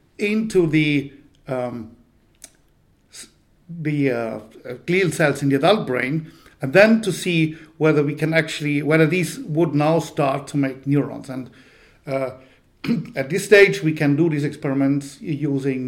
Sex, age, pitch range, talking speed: male, 50-69, 135-170 Hz, 145 wpm